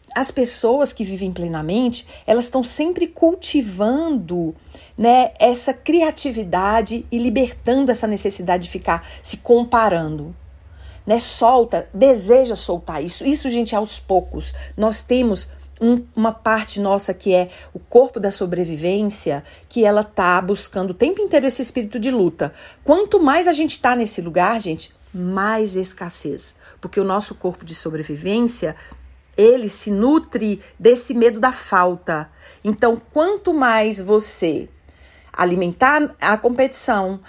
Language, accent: Portuguese, Brazilian